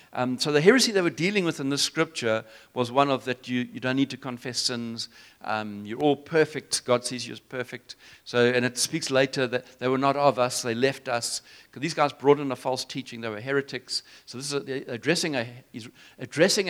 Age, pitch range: 60-79, 125-155 Hz